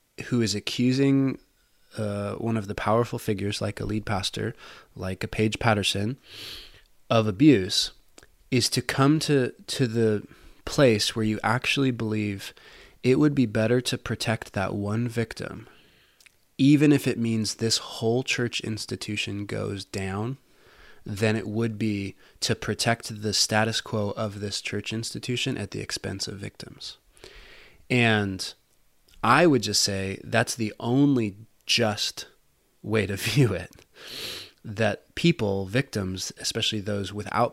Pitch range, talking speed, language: 105-120 Hz, 140 wpm, English